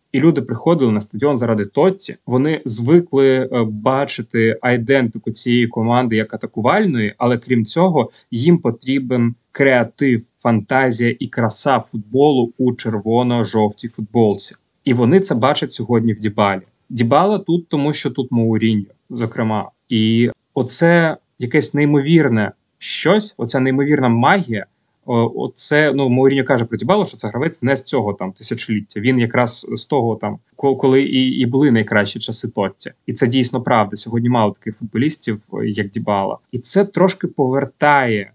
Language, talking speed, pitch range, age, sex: Ukrainian, 140 wpm, 115-140 Hz, 30-49, male